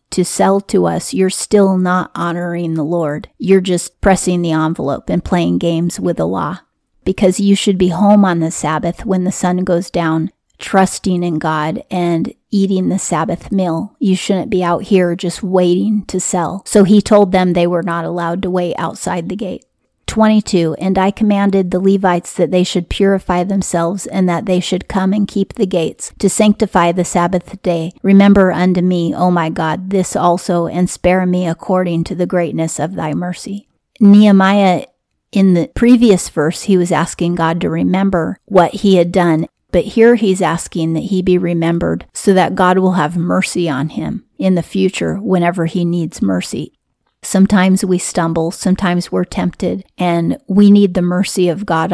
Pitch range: 170-195 Hz